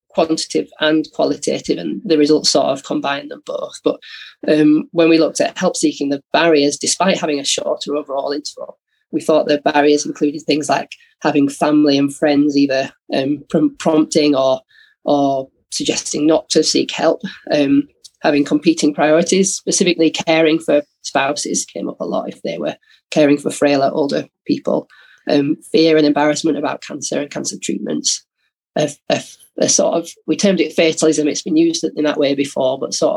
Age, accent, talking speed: 20-39, British, 170 wpm